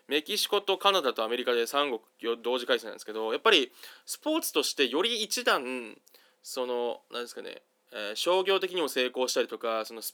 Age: 20-39